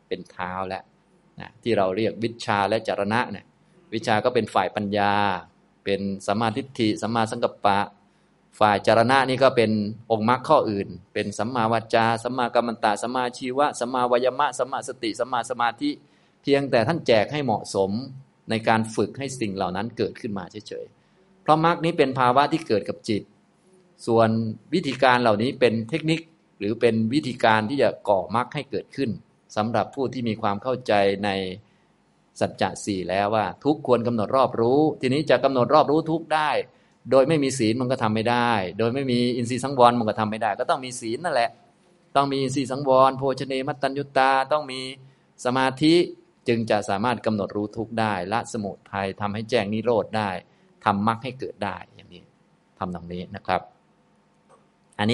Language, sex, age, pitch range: Thai, male, 20-39, 105-135 Hz